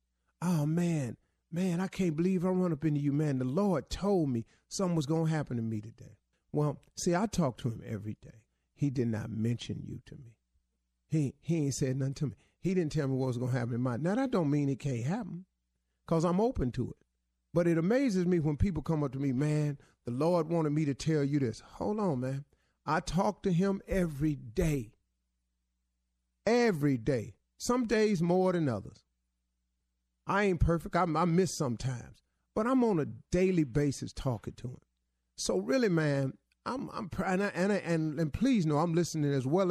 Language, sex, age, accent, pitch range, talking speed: English, male, 50-69, American, 115-180 Hz, 210 wpm